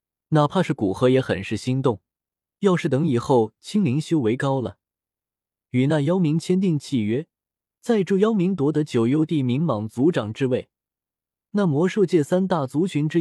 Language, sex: Chinese, male